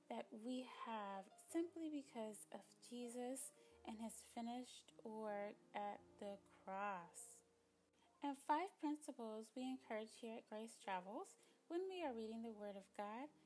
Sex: female